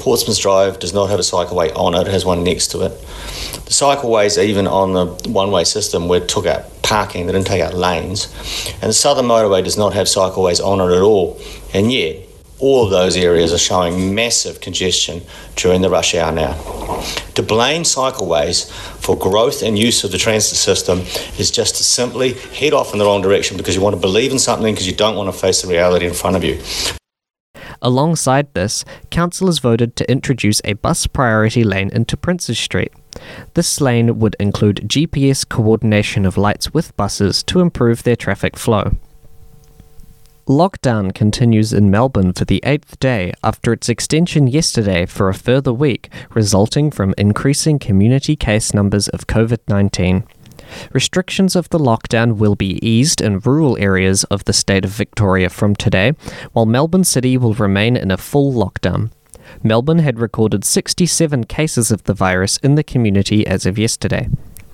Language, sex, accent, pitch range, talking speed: English, male, Australian, 95-130 Hz, 180 wpm